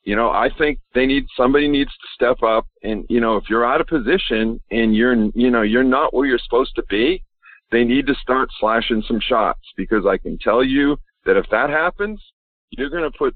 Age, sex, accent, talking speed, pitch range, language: 50-69, male, American, 225 wpm, 115-145 Hz, English